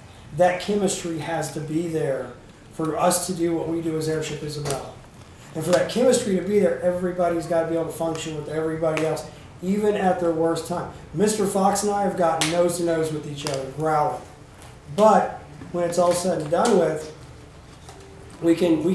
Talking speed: 180 wpm